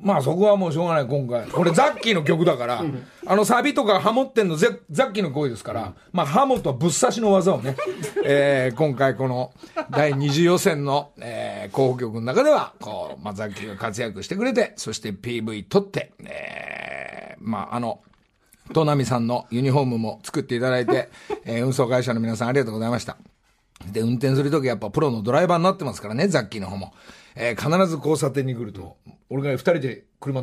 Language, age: Japanese, 40-59